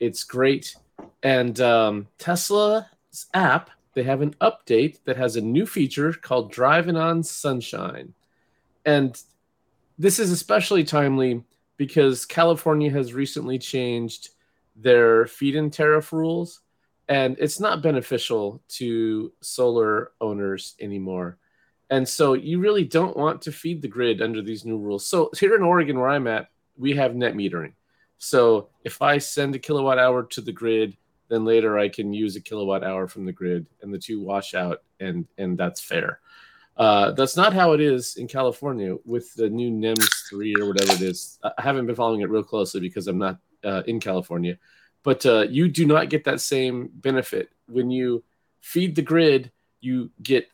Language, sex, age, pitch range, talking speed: English, male, 30-49, 110-150 Hz, 170 wpm